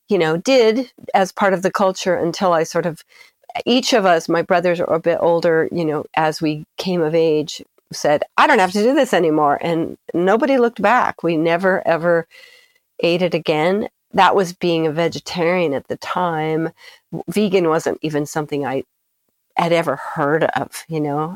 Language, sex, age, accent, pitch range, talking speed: English, female, 40-59, American, 150-185 Hz, 185 wpm